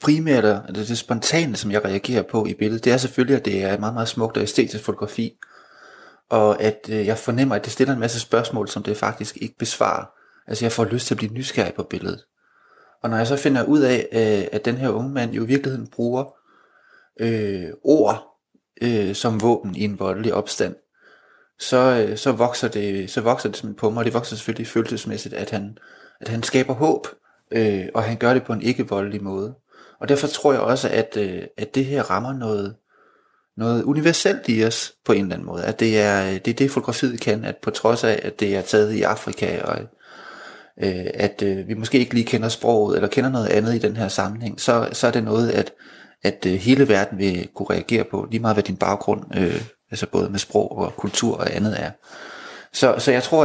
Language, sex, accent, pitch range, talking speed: Danish, male, native, 105-125 Hz, 200 wpm